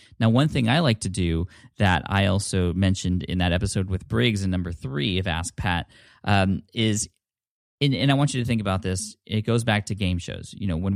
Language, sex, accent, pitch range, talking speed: English, male, American, 95-115 Hz, 230 wpm